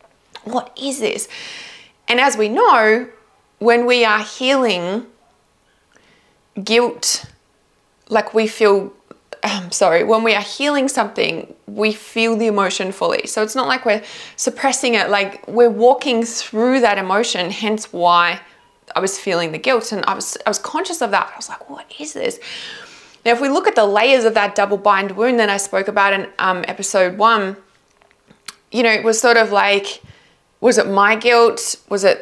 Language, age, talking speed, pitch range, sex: English, 20-39, 175 wpm, 200-225 Hz, female